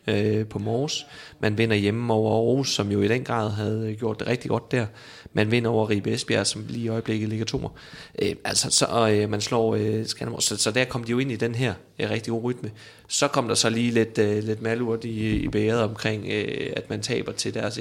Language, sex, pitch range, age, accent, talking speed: Danish, male, 110-120 Hz, 30-49, native, 235 wpm